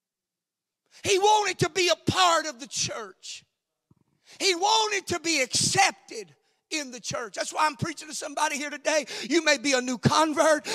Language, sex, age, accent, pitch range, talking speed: English, male, 40-59, American, 210-310 Hz, 175 wpm